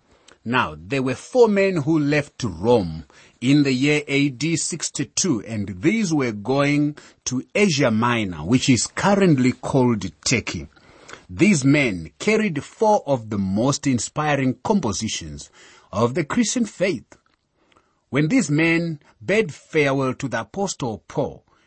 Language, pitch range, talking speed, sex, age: English, 110-160 Hz, 130 wpm, male, 30-49